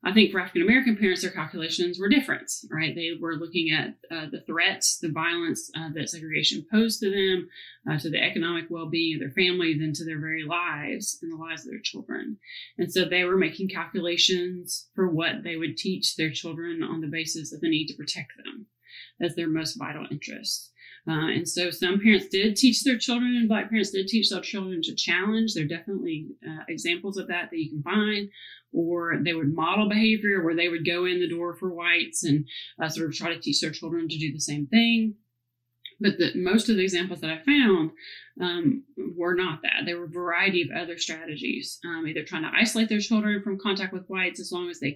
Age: 30-49